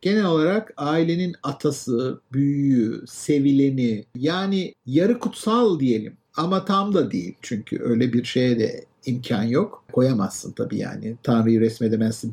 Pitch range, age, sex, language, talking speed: 140-200 Hz, 50-69, male, Turkish, 125 wpm